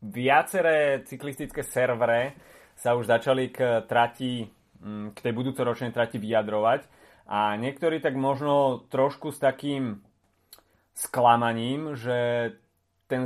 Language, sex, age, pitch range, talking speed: Slovak, male, 30-49, 110-130 Hz, 105 wpm